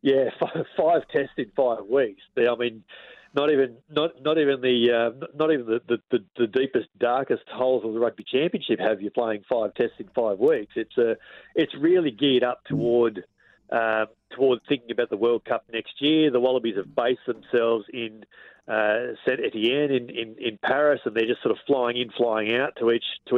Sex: male